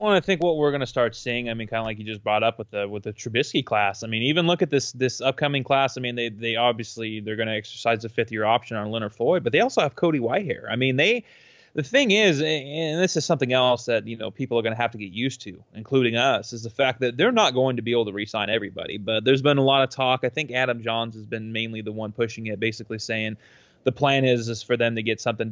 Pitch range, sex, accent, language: 110-130 Hz, male, American, English